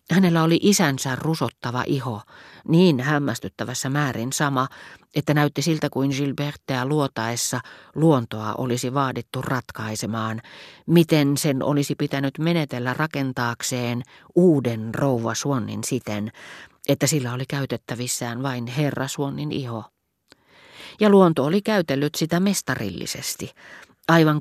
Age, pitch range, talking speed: 40-59, 125-150 Hz, 105 wpm